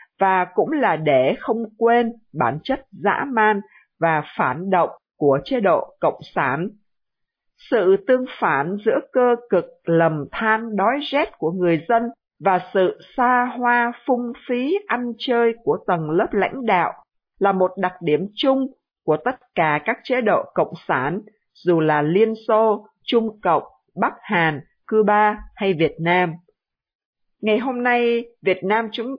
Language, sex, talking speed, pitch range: Vietnamese, female, 155 wpm, 180-245 Hz